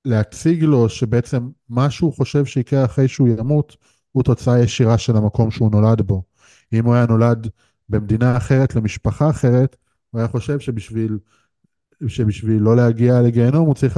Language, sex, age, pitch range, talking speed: Hebrew, male, 20-39, 115-145 Hz, 150 wpm